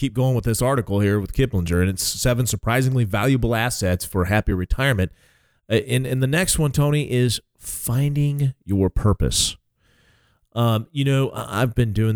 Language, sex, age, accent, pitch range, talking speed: English, male, 40-59, American, 100-130 Hz, 165 wpm